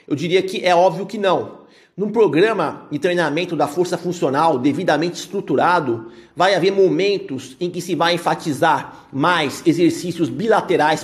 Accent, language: Brazilian, Portuguese